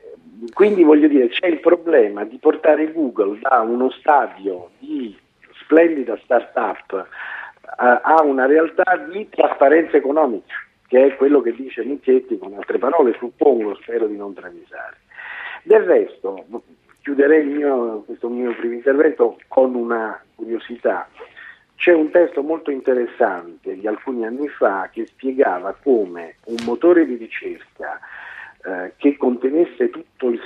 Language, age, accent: Italian, 50-69, native